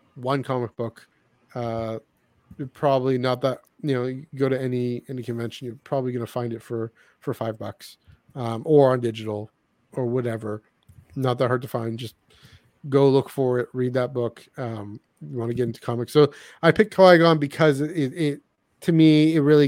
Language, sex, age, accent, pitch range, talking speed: English, male, 30-49, American, 120-155 Hz, 190 wpm